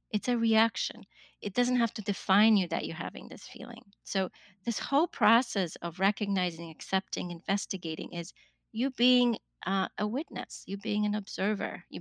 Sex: female